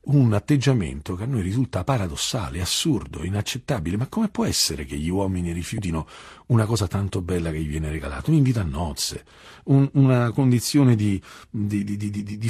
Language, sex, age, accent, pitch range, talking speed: Italian, male, 50-69, native, 85-120 Hz, 180 wpm